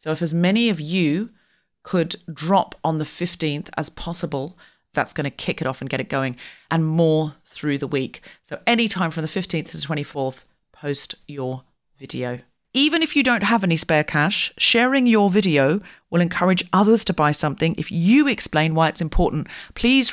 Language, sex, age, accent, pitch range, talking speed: English, female, 40-59, British, 145-180 Hz, 190 wpm